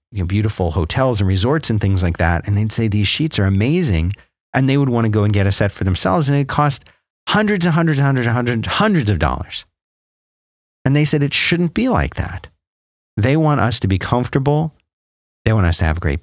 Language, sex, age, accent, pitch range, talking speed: English, male, 40-59, American, 95-135 Hz, 225 wpm